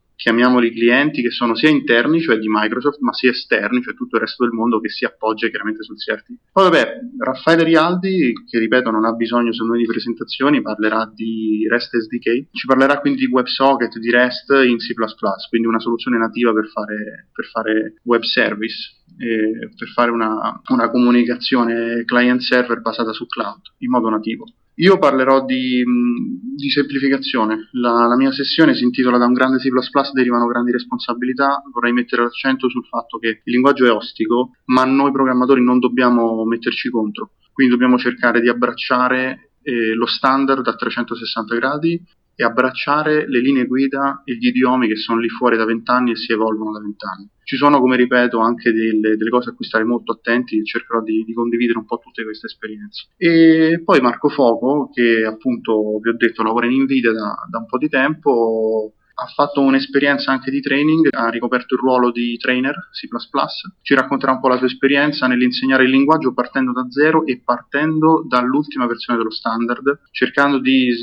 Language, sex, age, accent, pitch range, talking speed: Italian, male, 20-39, native, 115-135 Hz, 180 wpm